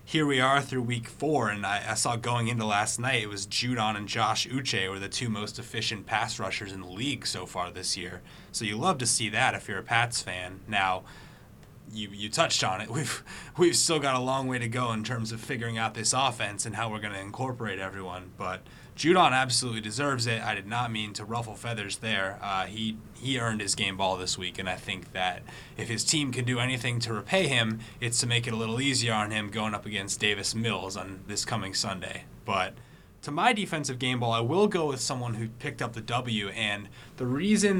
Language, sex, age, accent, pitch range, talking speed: English, male, 20-39, American, 110-130 Hz, 230 wpm